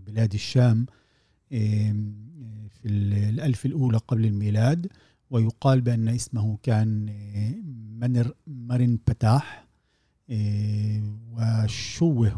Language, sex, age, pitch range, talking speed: Arabic, male, 50-69, 110-130 Hz, 70 wpm